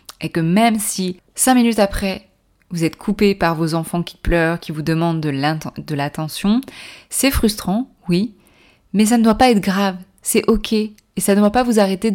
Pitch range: 175-220 Hz